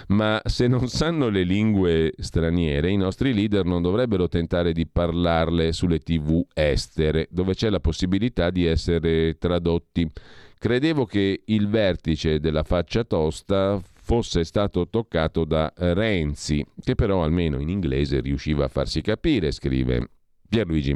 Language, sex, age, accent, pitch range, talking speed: Italian, male, 40-59, native, 75-100 Hz, 135 wpm